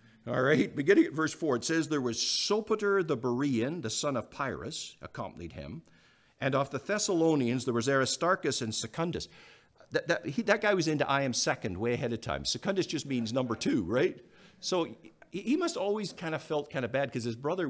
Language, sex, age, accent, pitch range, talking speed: English, male, 50-69, American, 115-160 Hz, 210 wpm